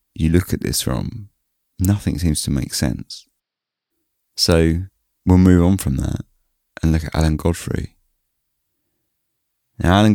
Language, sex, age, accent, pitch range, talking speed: English, male, 30-49, British, 75-90 Hz, 135 wpm